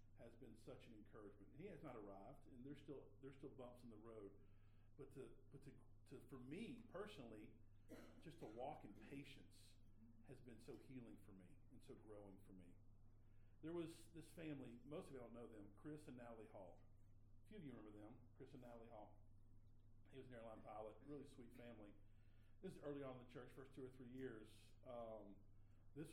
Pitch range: 105-130 Hz